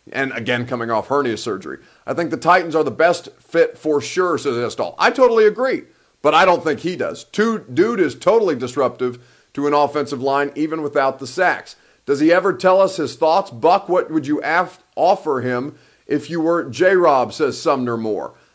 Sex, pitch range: male, 135-185 Hz